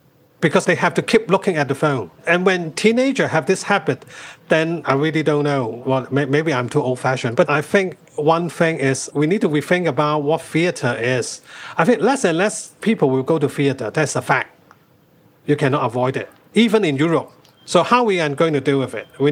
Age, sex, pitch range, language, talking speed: 40-59, male, 140-200 Hz, English, 210 wpm